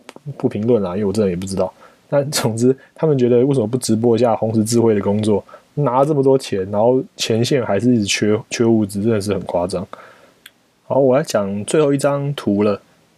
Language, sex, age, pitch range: Chinese, male, 20-39, 105-140 Hz